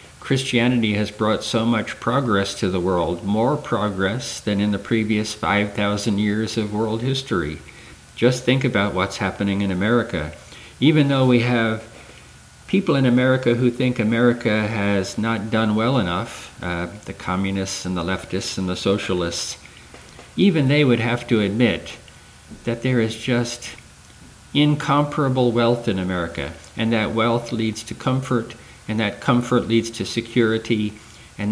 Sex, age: male, 50-69